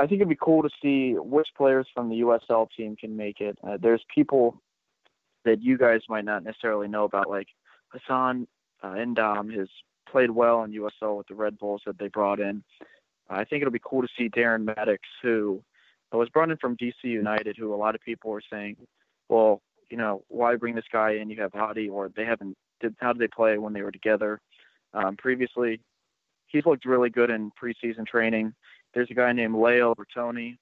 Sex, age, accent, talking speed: male, 20-39, American, 205 wpm